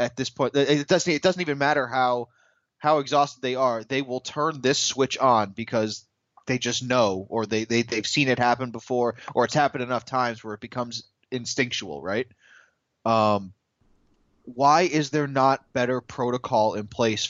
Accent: American